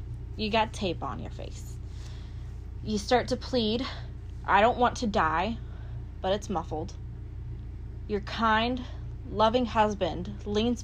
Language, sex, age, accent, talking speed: English, female, 20-39, American, 125 wpm